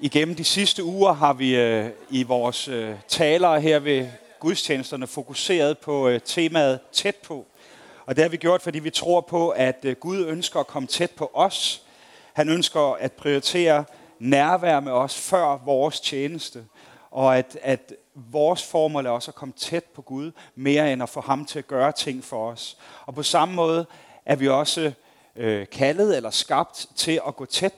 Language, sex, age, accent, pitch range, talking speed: Danish, male, 30-49, native, 130-165 Hz, 175 wpm